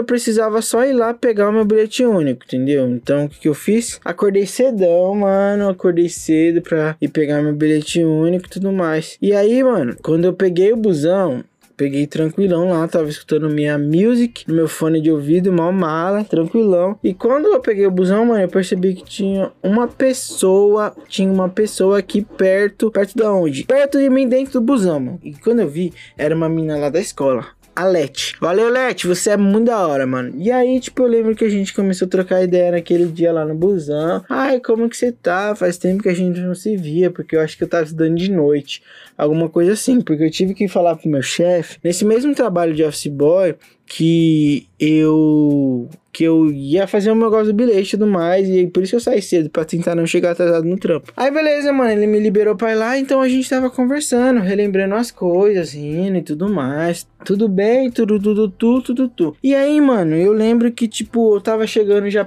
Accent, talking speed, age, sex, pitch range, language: Brazilian, 215 wpm, 20-39, male, 170-225 Hz, Portuguese